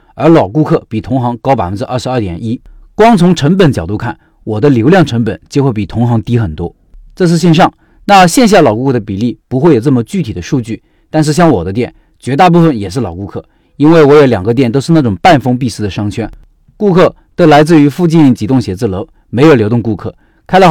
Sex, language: male, Chinese